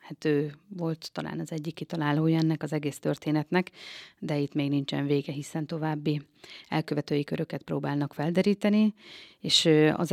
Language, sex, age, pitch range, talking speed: Hungarian, female, 30-49, 150-160 Hz, 140 wpm